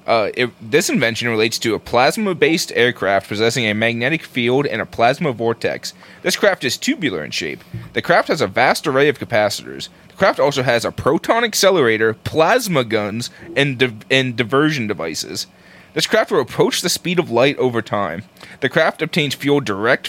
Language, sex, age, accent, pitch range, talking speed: English, male, 30-49, American, 110-155 Hz, 175 wpm